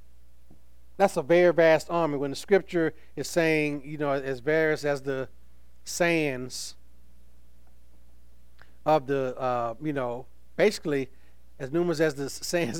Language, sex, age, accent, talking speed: English, male, 40-59, American, 130 wpm